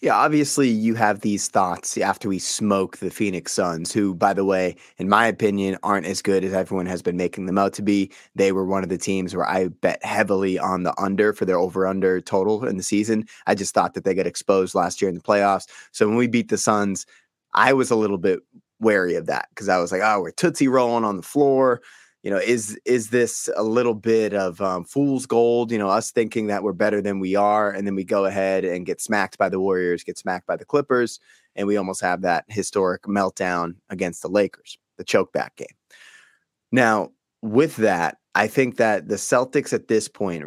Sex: male